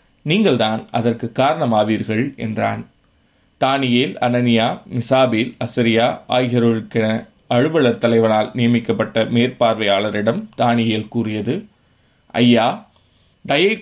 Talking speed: 75 wpm